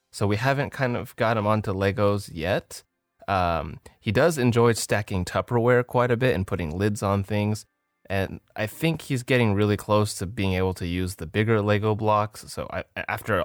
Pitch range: 90-115 Hz